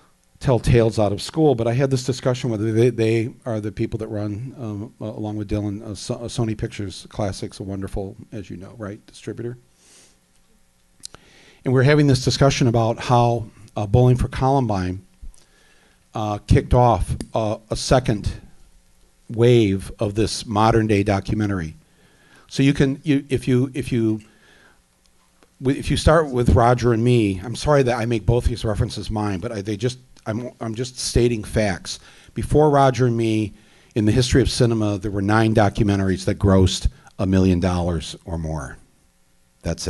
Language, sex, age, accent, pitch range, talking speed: English, male, 50-69, American, 95-125 Hz, 170 wpm